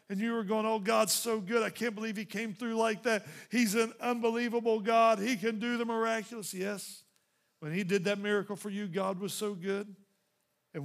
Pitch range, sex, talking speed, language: 175-225 Hz, male, 210 wpm, English